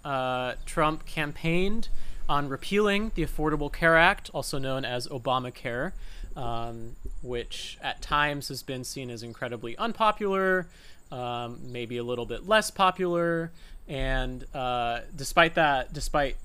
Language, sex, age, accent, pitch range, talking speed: English, male, 30-49, American, 125-165 Hz, 130 wpm